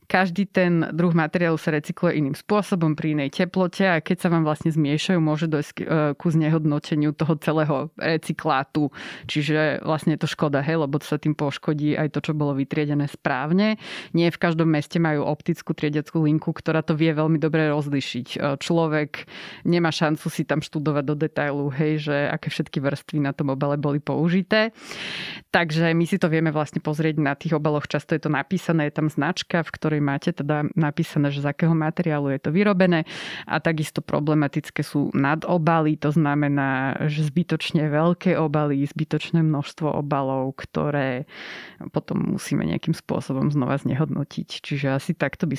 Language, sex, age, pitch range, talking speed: Slovak, female, 20-39, 150-175 Hz, 165 wpm